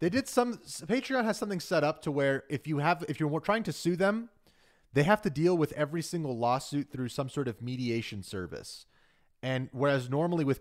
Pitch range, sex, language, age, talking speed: 115-145 Hz, male, English, 30-49, 210 wpm